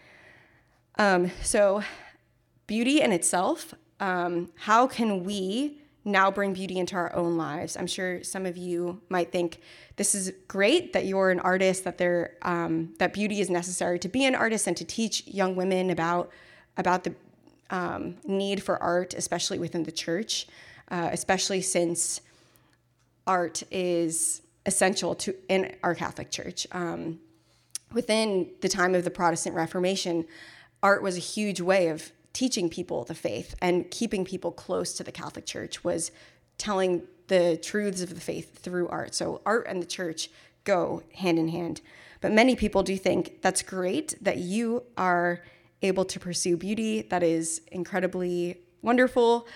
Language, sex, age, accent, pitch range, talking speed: English, female, 20-39, American, 170-195 Hz, 155 wpm